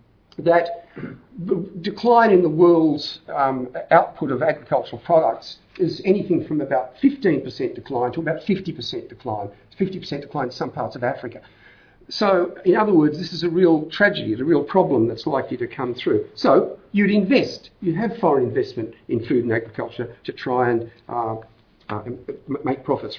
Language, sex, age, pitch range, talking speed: English, male, 50-69, 135-195 Hz, 165 wpm